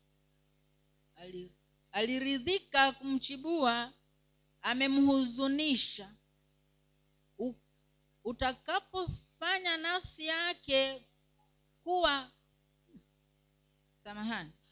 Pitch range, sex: 255-325 Hz, female